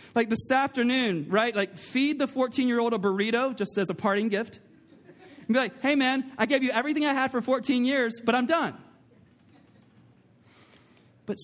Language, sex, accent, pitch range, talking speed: English, male, American, 220-260 Hz, 175 wpm